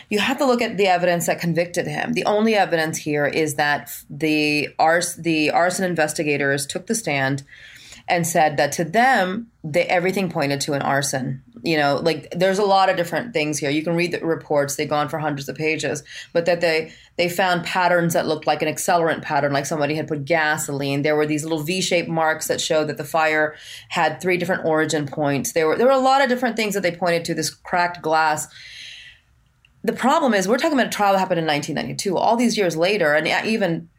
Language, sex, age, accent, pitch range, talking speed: English, female, 30-49, American, 155-190 Hz, 215 wpm